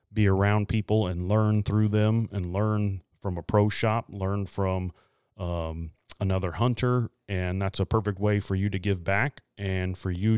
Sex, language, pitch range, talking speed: male, English, 95-110 Hz, 180 wpm